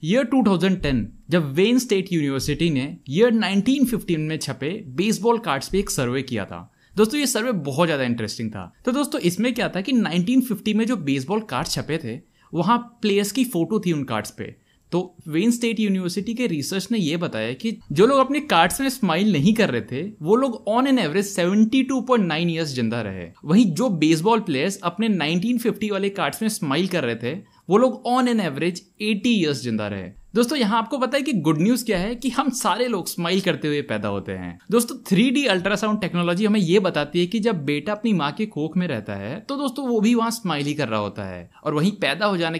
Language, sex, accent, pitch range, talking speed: Hindi, male, native, 145-225 Hz, 215 wpm